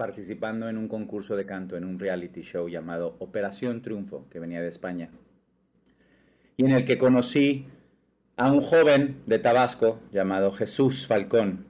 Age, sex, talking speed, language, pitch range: 40-59, male, 155 wpm, Spanish, 95-125 Hz